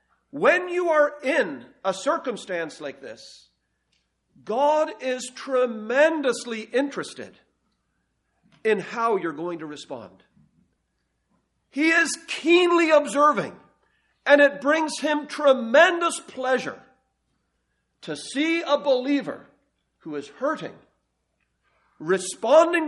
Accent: American